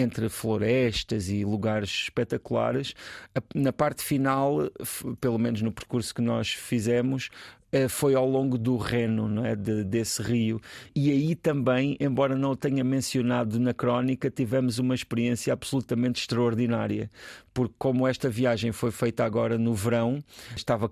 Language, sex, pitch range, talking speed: Portuguese, male, 115-140 Hz, 140 wpm